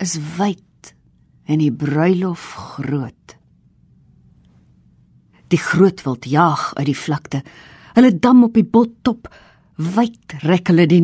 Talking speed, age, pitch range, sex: 115 wpm, 50-69, 155-235 Hz, female